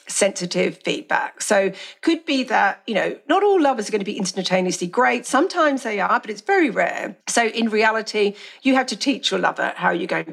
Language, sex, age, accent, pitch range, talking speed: English, female, 50-69, British, 205-310 Hz, 210 wpm